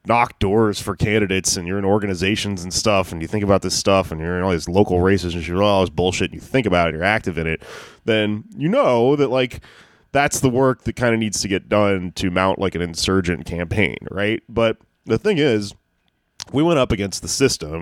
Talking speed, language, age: 235 wpm, English, 20-39